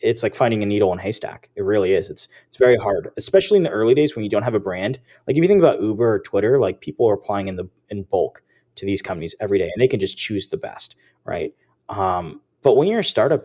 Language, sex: English, male